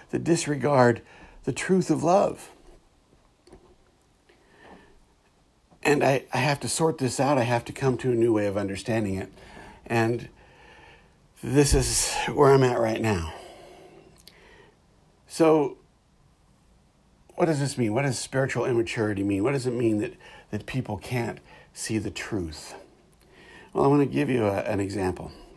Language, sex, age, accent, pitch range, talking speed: English, male, 60-79, American, 100-125 Hz, 150 wpm